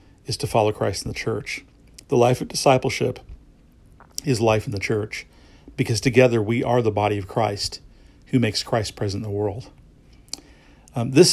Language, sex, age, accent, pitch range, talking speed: English, male, 40-59, American, 100-125 Hz, 175 wpm